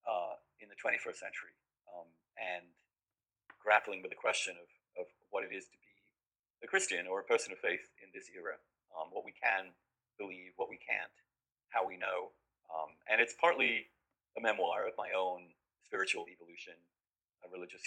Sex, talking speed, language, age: male, 170 wpm, English, 40-59